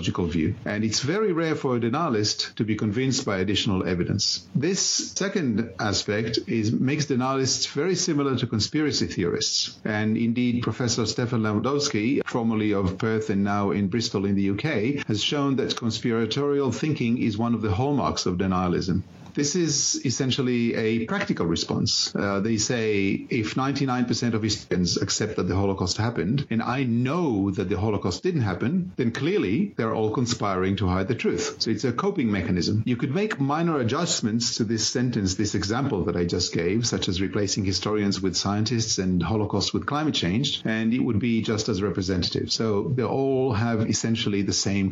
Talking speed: 175 wpm